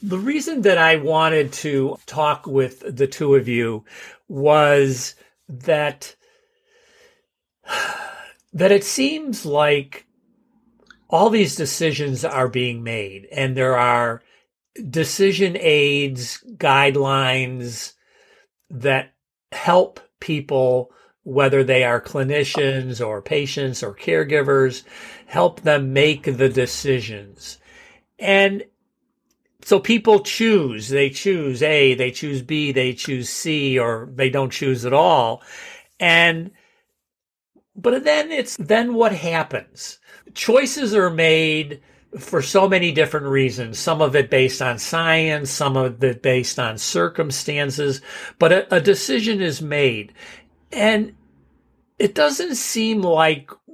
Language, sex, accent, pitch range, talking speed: English, male, American, 135-200 Hz, 115 wpm